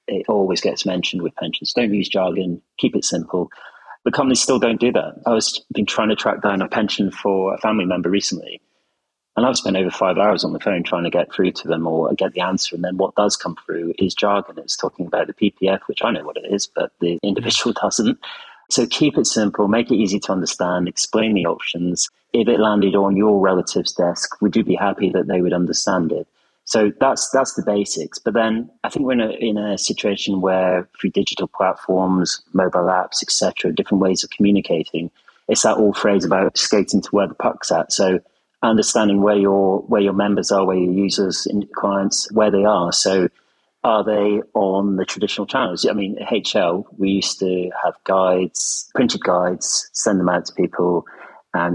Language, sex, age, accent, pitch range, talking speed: English, male, 30-49, British, 90-105 Hz, 210 wpm